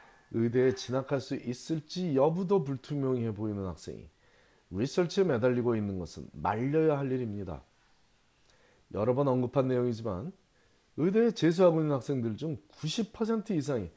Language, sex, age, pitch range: Korean, male, 40-59, 105-150 Hz